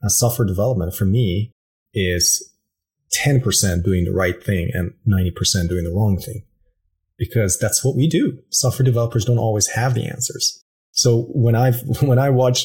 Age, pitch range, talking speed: 30-49, 100-125 Hz, 165 wpm